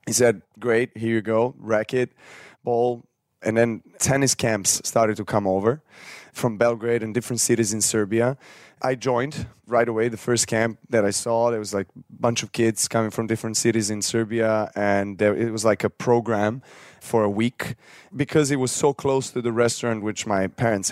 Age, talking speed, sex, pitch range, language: 20-39, 190 wpm, male, 110-125 Hz, English